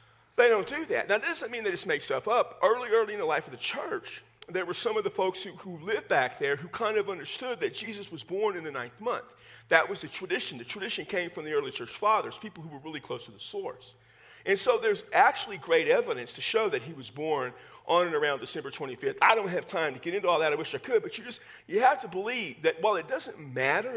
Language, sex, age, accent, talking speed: English, male, 50-69, American, 265 wpm